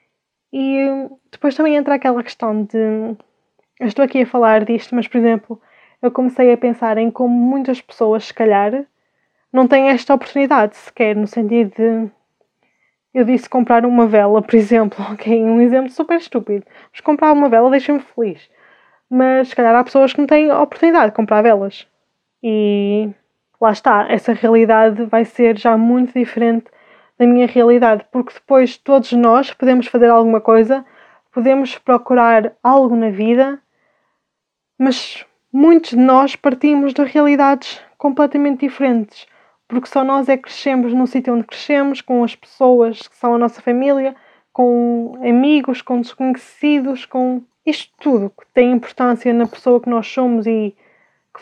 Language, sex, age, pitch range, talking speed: Portuguese, female, 20-39, 230-270 Hz, 155 wpm